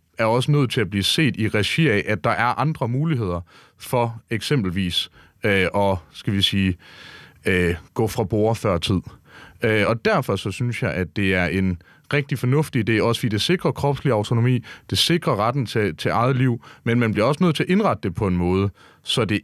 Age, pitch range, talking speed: 30-49, 95-130 Hz, 200 wpm